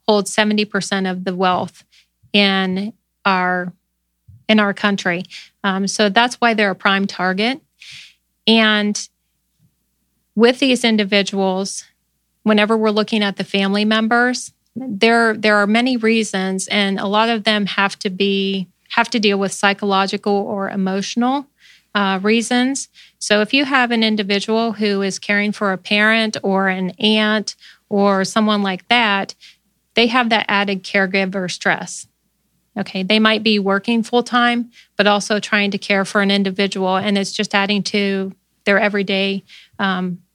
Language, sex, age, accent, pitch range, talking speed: English, female, 30-49, American, 195-220 Hz, 145 wpm